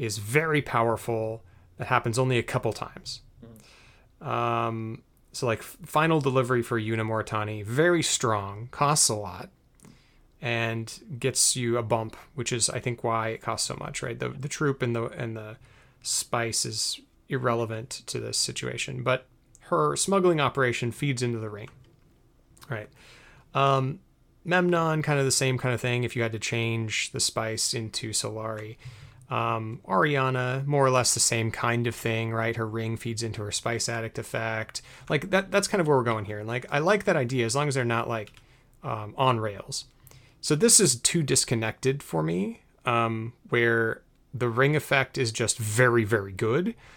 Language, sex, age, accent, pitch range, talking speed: English, male, 30-49, American, 115-130 Hz, 175 wpm